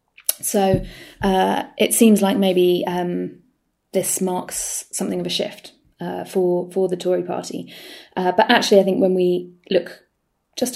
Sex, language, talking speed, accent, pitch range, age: female, English, 155 wpm, British, 180-220 Hz, 20-39